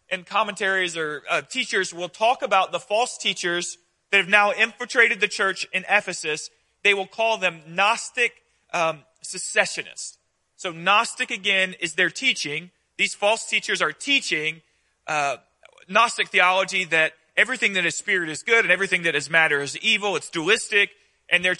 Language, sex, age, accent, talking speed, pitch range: English, male, 30-49, American, 160 wpm, 170-215 Hz